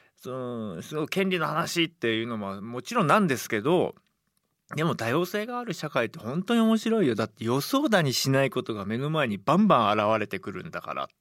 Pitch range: 105-180 Hz